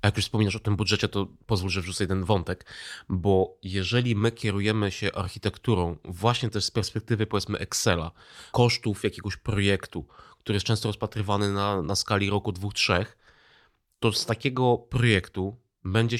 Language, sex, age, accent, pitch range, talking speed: Polish, male, 30-49, native, 100-125 Hz, 160 wpm